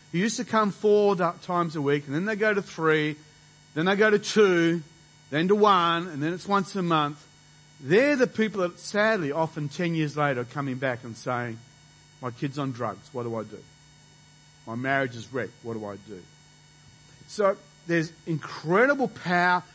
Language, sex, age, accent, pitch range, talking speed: English, male, 40-59, Australian, 145-215 Hz, 190 wpm